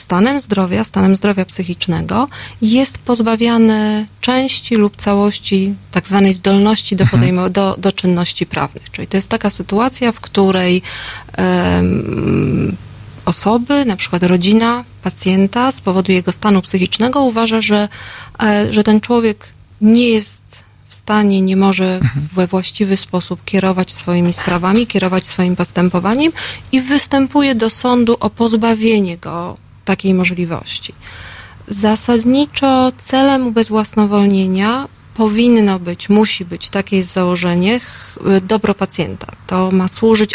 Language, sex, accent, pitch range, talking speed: Polish, female, native, 185-220 Hz, 120 wpm